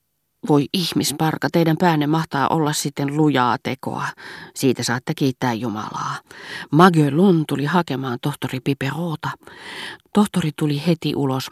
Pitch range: 135-165 Hz